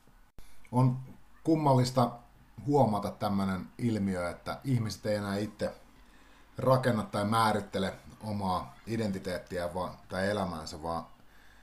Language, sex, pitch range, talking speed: Finnish, male, 95-120 Hz, 95 wpm